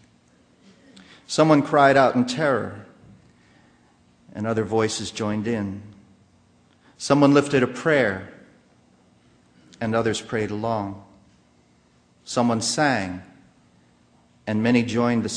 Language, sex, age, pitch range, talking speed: English, male, 40-59, 100-125 Hz, 95 wpm